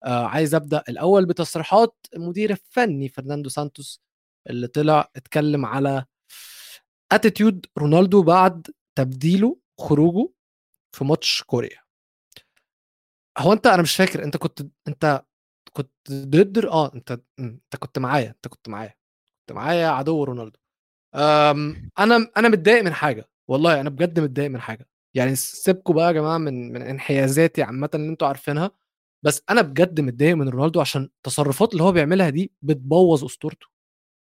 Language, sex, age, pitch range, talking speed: Arabic, male, 20-39, 140-185 Hz, 140 wpm